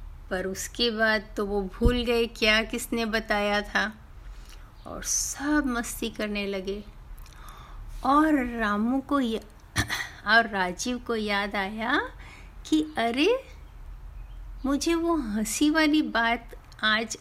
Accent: native